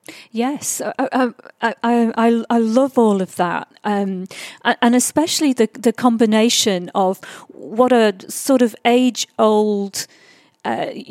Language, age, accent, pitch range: English, 40-59, British, 205-265 Hz